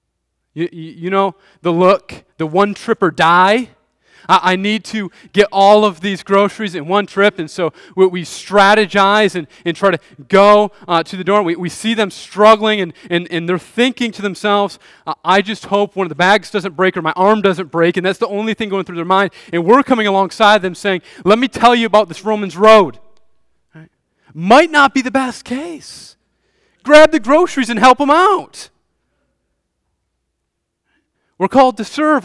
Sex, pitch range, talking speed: male, 165-215 Hz, 175 wpm